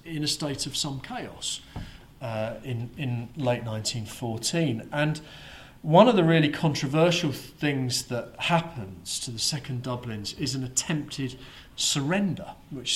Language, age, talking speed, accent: English, 40-59, 135 wpm, British